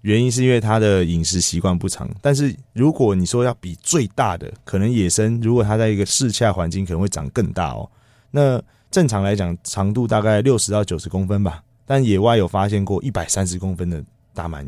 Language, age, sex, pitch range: Chinese, 20-39, male, 90-120 Hz